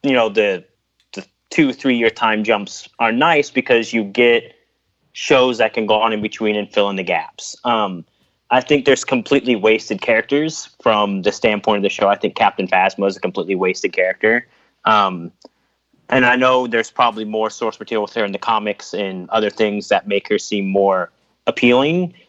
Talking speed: 190 wpm